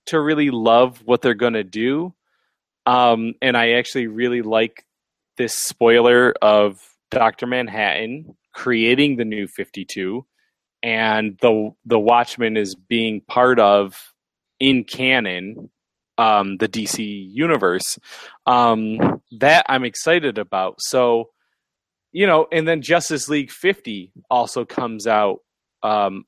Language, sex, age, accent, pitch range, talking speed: English, male, 20-39, American, 110-140 Hz, 125 wpm